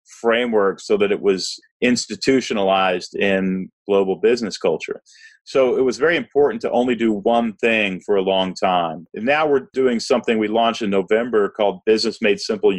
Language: English